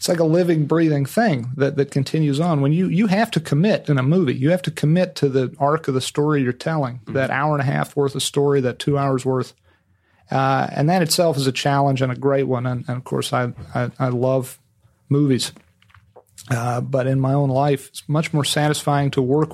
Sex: male